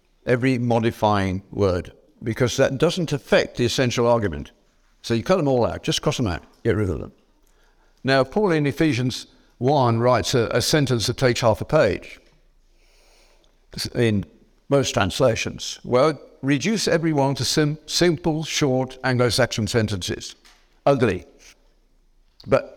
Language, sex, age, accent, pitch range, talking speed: English, male, 60-79, British, 110-145 Hz, 135 wpm